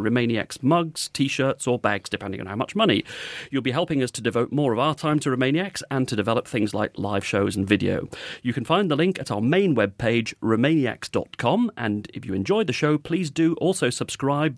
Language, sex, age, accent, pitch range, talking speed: English, male, 40-59, British, 115-145 Hz, 210 wpm